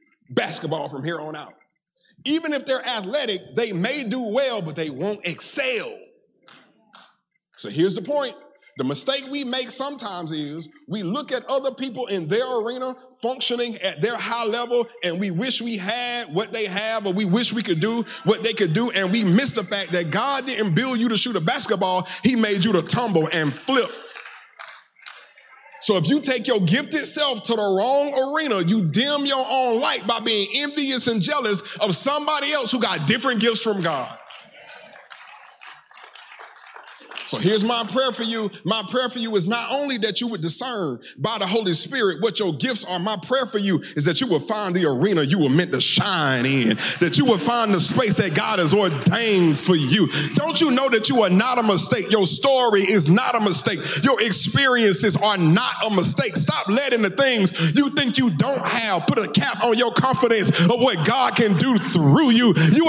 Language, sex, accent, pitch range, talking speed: English, male, American, 190-255 Hz, 195 wpm